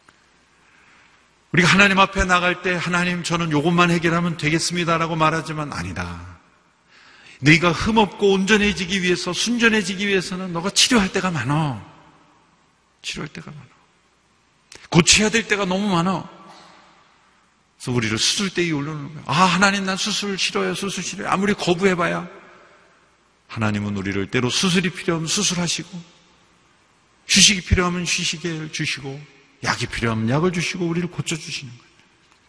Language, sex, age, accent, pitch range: Korean, male, 40-59, native, 150-195 Hz